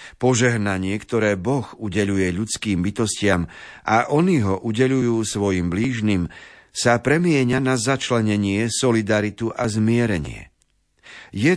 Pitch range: 100-130 Hz